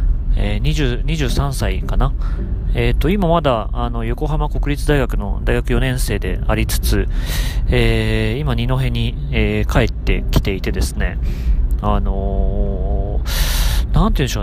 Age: 40-59